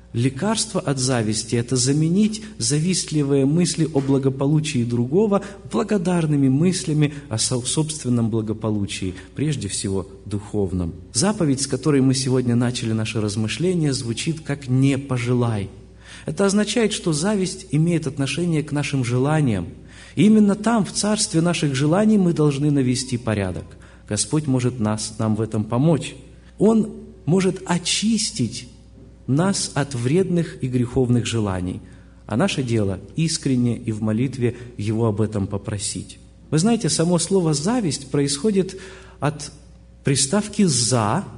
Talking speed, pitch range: 125 wpm, 120-170 Hz